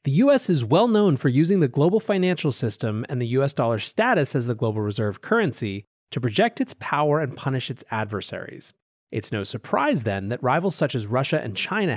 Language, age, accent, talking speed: English, 30-49, American, 200 wpm